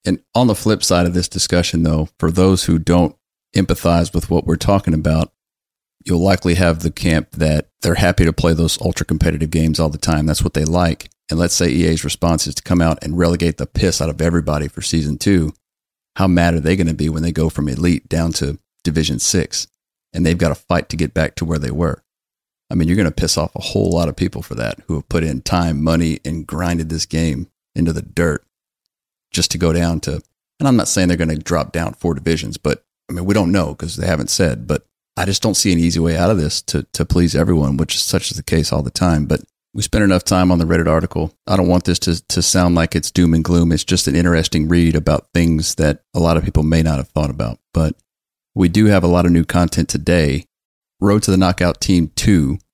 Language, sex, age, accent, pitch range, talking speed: English, male, 40-59, American, 80-90 Hz, 250 wpm